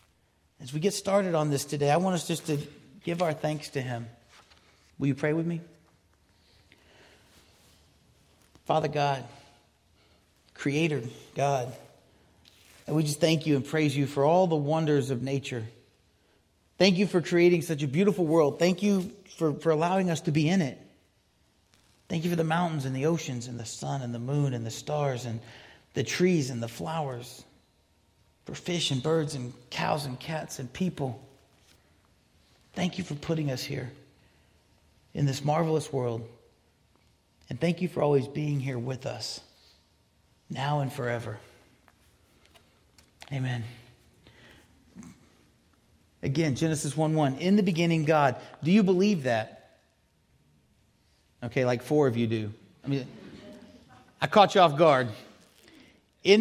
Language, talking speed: English, 150 wpm